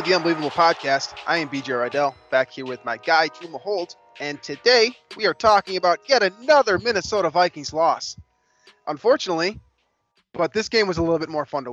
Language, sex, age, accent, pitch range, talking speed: English, male, 20-39, American, 130-175 Hz, 185 wpm